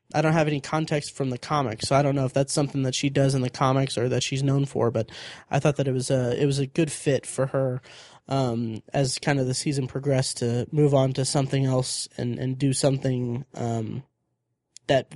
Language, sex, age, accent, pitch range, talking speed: English, male, 20-39, American, 130-145 Hz, 235 wpm